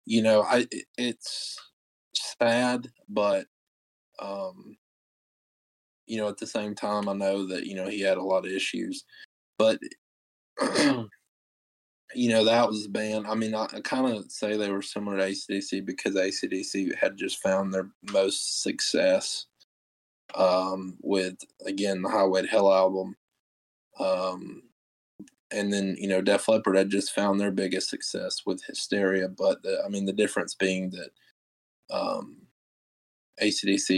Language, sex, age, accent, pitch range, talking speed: English, male, 20-39, American, 95-115 Hz, 145 wpm